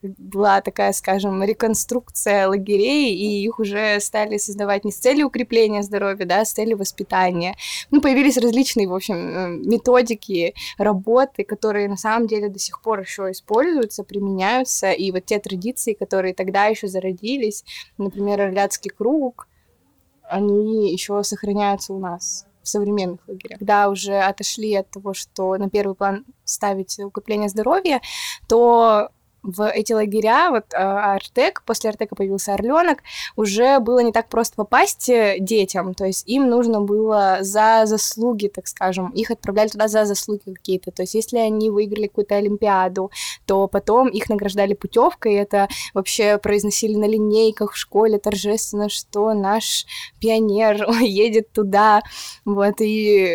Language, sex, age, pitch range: Russian, female, 20-39, 195-225 Hz